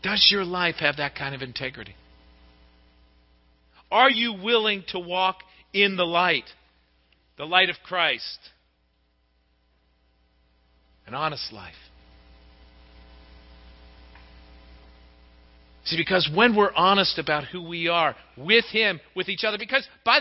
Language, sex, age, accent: English, male, 50-69, American